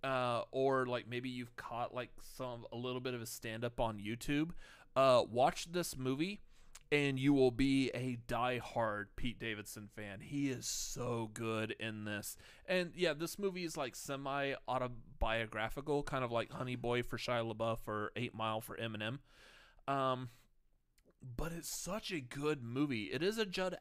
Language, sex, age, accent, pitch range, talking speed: English, male, 30-49, American, 115-140 Hz, 170 wpm